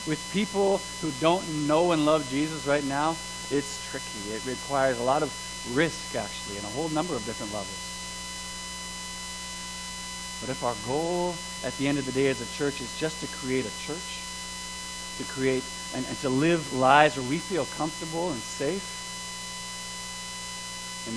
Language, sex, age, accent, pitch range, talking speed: English, male, 30-49, American, 125-170 Hz, 165 wpm